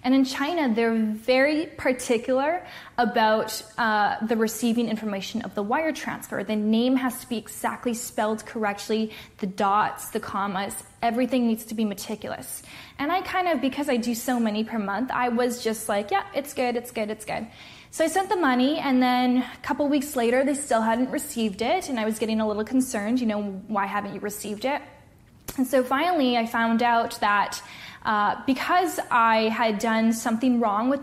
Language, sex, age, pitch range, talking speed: English, female, 10-29, 215-255 Hz, 190 wpm